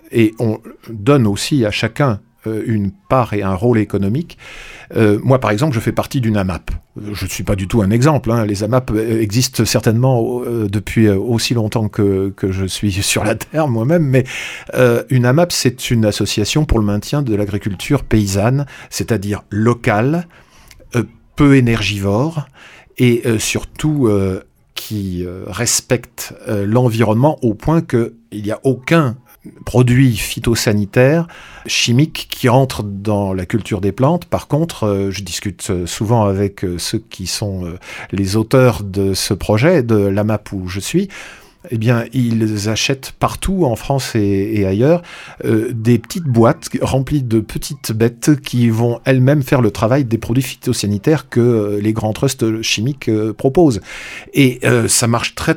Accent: French